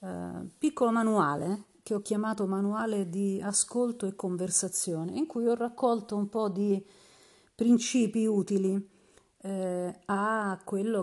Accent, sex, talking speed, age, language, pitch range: native, female, 120 wpm, 40-59, Italian, 180-220 Hz